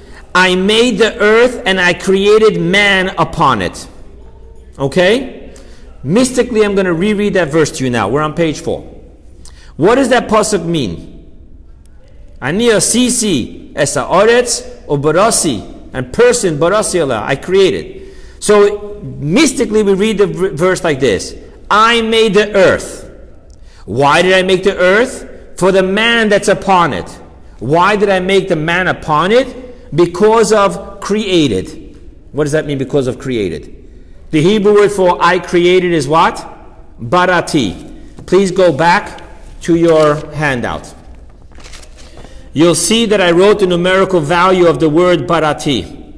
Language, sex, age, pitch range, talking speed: English, male, 50-69, 150-205 Hz, 135 wpm